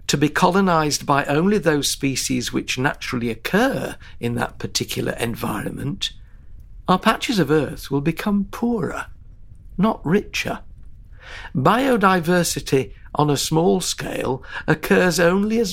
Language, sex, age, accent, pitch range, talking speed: English, male, 60-79, British, 115-180 Hz, 120 wpm